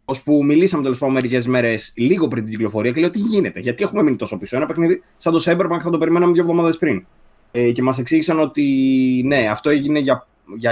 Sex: male